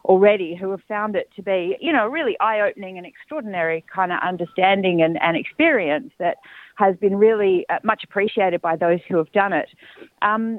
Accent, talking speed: Australian, 180 wpm